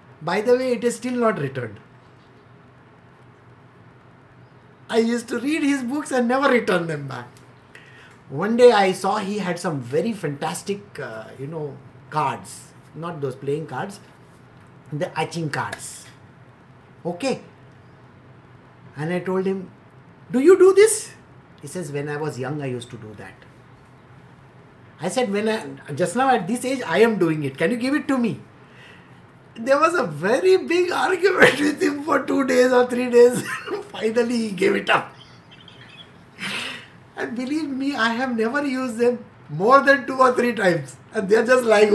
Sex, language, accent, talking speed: male, English, Indian, 165 wpm